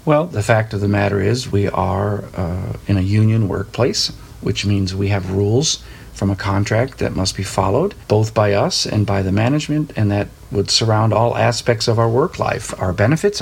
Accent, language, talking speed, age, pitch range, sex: American, English, 200 wpm, 40-59, 100-125 Hz, male